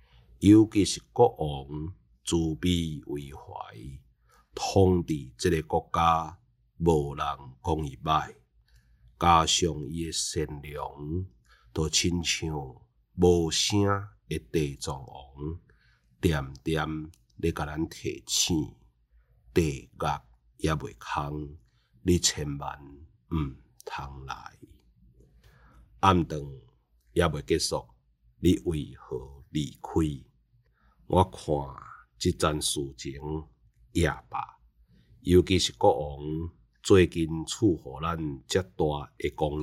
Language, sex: Chinese, male